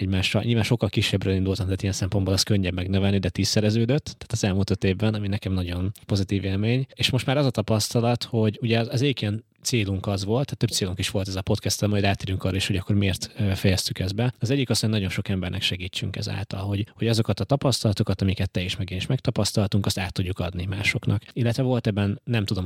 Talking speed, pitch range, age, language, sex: 225 wpm, 95-115 Hz, 20-39, Hungarian, male